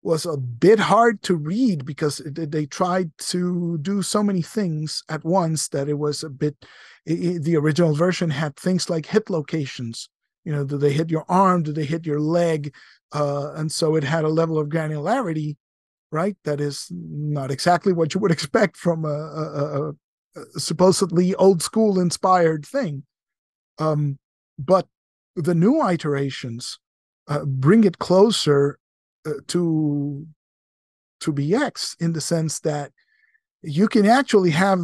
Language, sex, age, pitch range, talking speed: English, male, 50-69, 145-185 Hz, 155 wpm